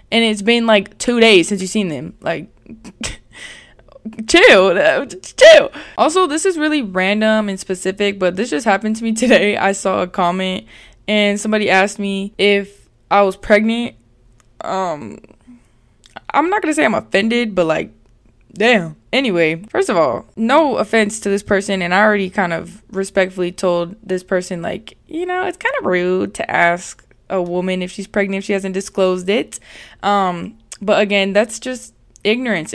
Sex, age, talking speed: female, 10-29, 170 wpm